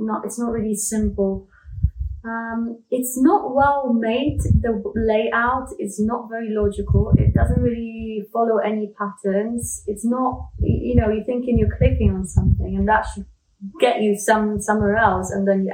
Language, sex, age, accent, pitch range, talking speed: English, female, 20-39, British, 200-250 Hz, 155 wpm